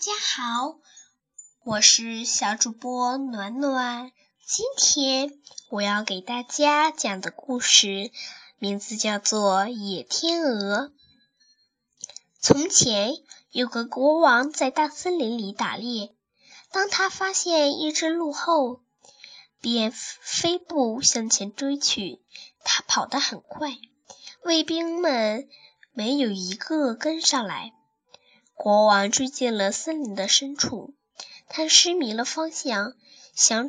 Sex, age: female, 10-29